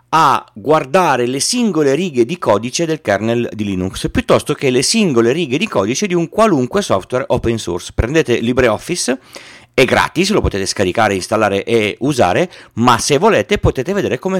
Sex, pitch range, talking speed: male, 105-145 Hz, 165 wpm